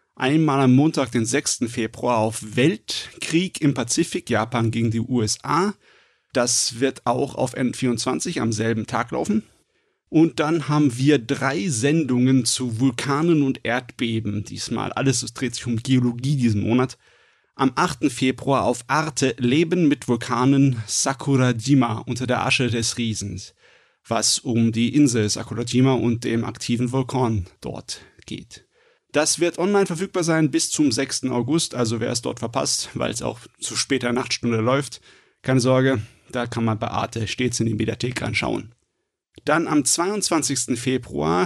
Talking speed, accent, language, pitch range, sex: 150 wpm, German, German, 120-145 Hz, male